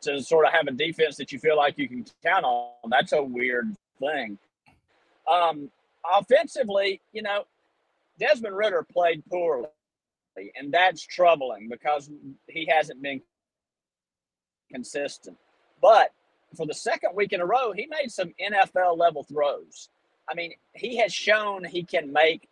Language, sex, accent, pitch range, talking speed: English, male, American, 150-205 Hz, 145 wpm